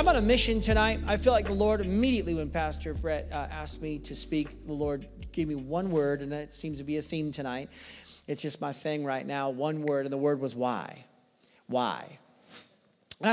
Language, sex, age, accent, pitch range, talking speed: English, male, 40-59, American, 190-255 Hz, 215 wpm